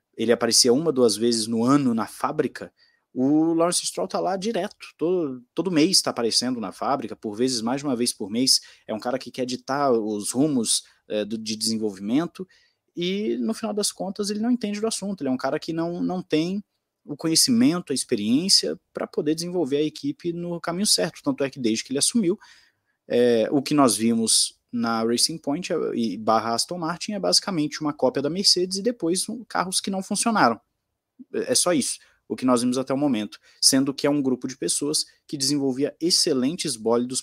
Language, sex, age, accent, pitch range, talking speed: Portuguese, male, 20-39, Brazilian, 120-180 Hz, 200 wpm